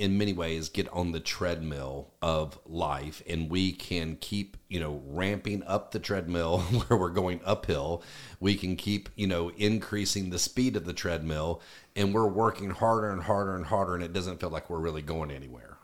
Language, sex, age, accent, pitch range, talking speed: English, male, 40-59, American, 85-115 Hz, 195 wpm